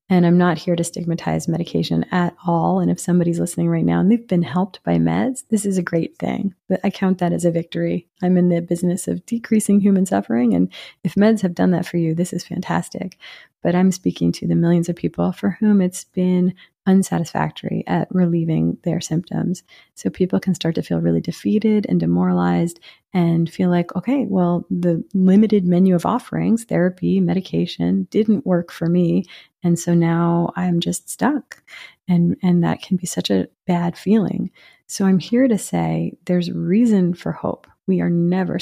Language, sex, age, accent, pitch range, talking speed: English, female, 30-49, American, 170-205 Hz, 190 wpm